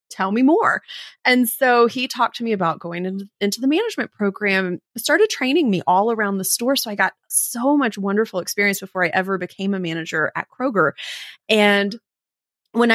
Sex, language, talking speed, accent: female, English, 180 wpm, American